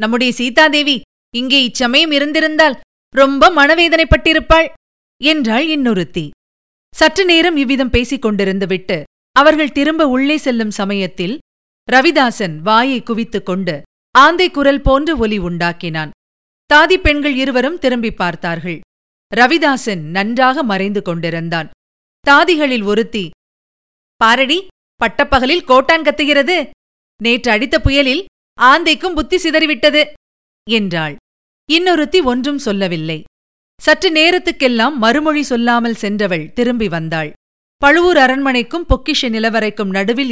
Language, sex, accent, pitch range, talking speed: Tamil, female, native, 200-300 Hz, 95 wpm